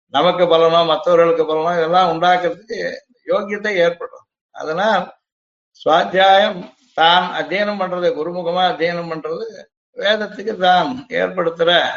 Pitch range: 170-210 Hz